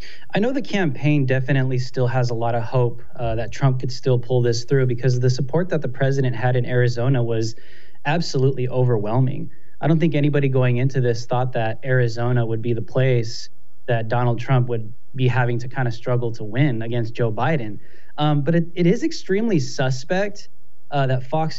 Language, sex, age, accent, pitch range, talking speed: English, male, 20-39, American, 125-145 Hz, 195 wpm